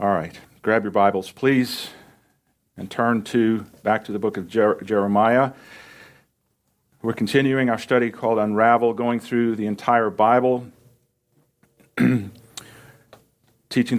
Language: English